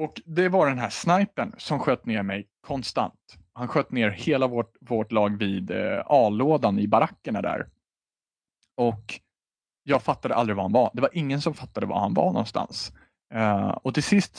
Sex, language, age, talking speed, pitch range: male, Swedish, 30-49, 180 wpm, 110-150 Hz